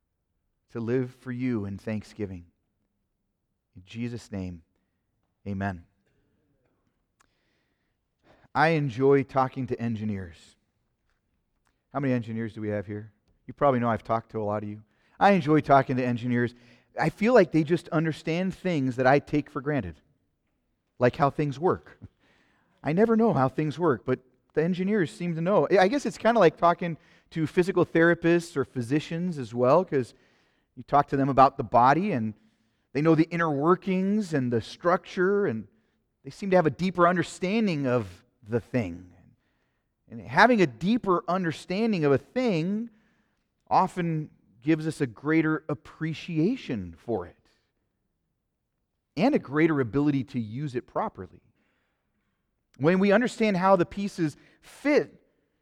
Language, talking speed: English, 150 wpm